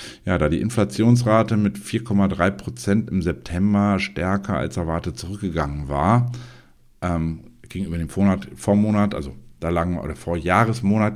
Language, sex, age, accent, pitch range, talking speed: German, male, 50-69, German, 85-105 Hz, 140 wpm